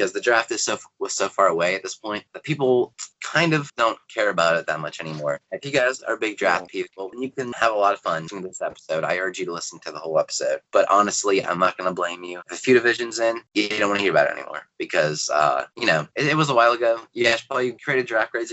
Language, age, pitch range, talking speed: English, 20-39, 90-125 Hz, 280 wpm